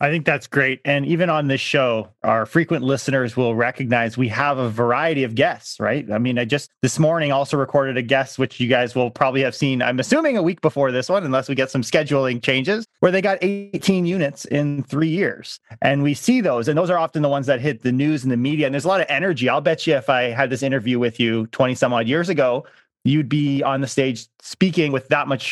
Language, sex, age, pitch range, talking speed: English, male, 30-49, 125-155 Hz, 250 wpm